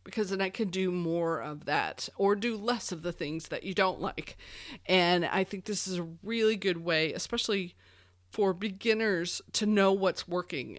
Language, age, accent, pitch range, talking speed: English, 40-59, American, 165-205 Hz, 190 wpm